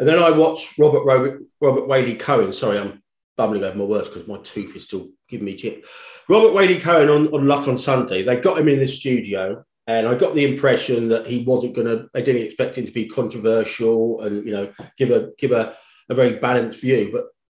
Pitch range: 115-160 Hz